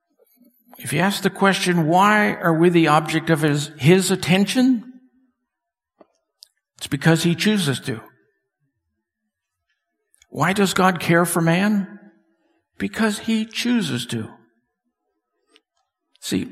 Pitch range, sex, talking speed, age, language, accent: 145-205 Hz, male, 110 wpm, 60-79, English, American